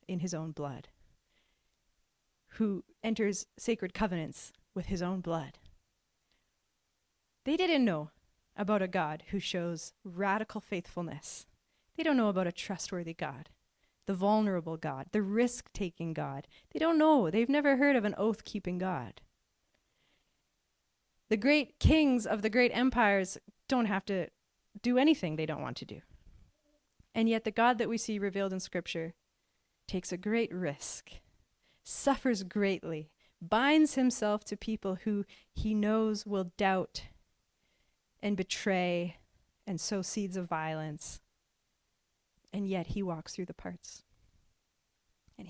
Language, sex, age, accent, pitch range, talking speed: English, female, 30-49, American, 180-240 Hz, 135 wpm